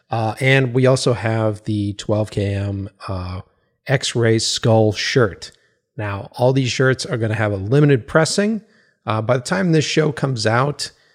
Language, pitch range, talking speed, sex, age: English, 105-135 Hz, 160 wpm, male, 30-49